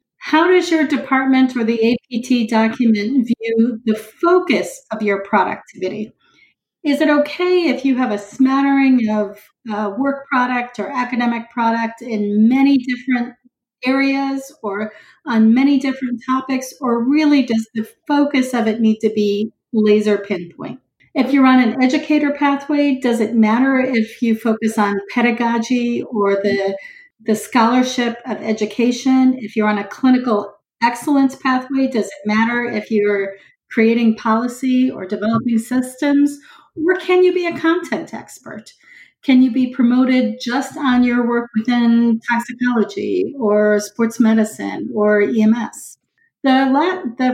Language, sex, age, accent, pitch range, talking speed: English, female, 40-59, American, 220-270 Hz, 140 wpm